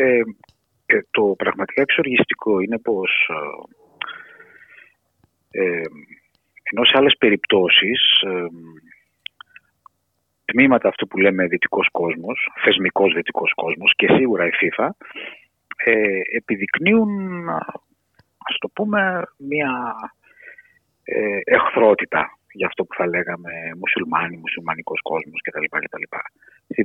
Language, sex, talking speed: Greek, male, 95 wpm